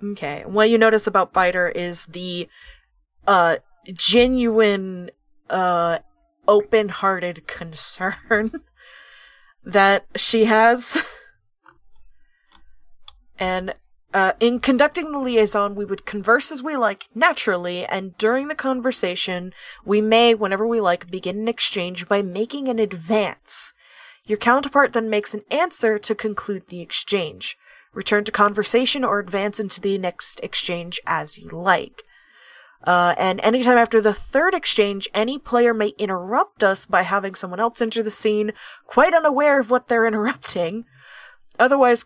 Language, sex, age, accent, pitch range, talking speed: English, female, 20-39, American, 190-240 Hz, 135 wpm